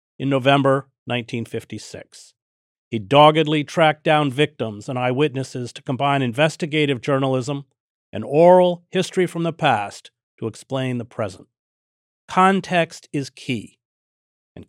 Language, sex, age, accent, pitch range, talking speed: English, male, 50-69, American, 115-155 Hz, 115 wpm